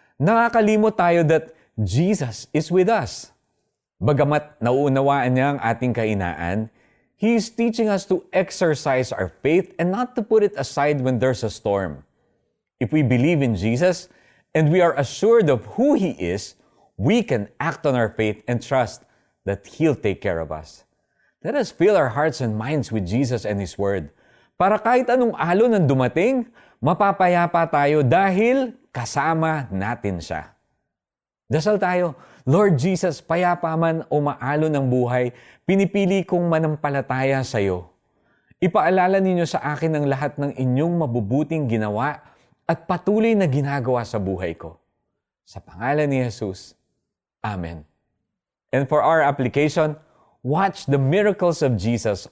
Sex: male